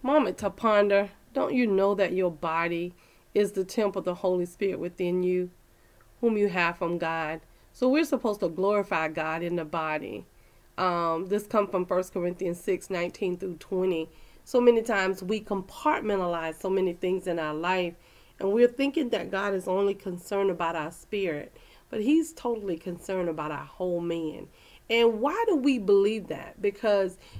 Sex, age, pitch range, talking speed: female, 40-59, 175-215 Hz, 175 wpm